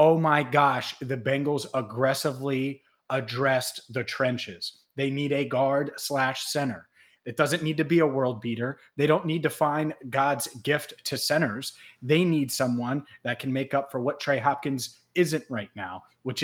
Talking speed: 170 wpm